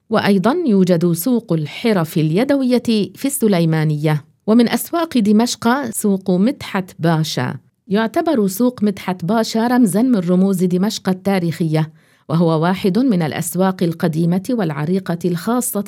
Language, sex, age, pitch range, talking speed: English, female, 50-69, 170-230 Hz, 110 wpm